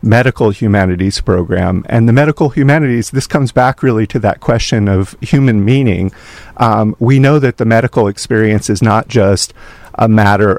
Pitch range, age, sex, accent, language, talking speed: 105-130 Hz, 50-69, male, American, English, 165 wpm